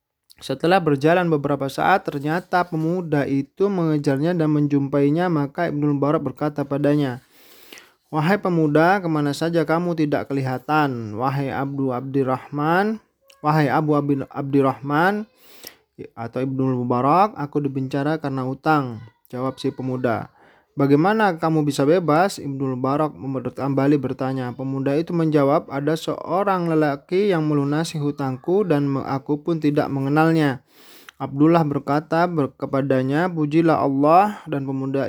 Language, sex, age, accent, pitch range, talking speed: Indonesian, male, 20-39, native, 135-160 Hz, 115 wpm